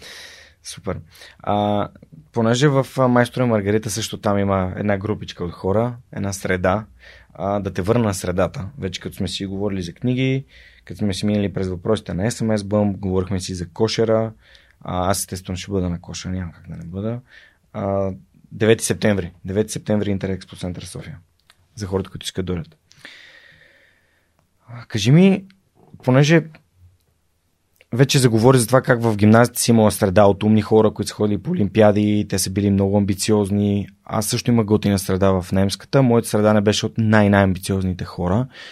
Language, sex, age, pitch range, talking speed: Bulgarian, male, 20-39, 95-115 Hz, 165 wpm